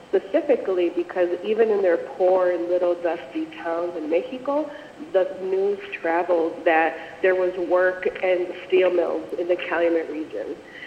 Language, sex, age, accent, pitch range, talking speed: English, female, 30-49, American, 165-185 Hz, 140 wpm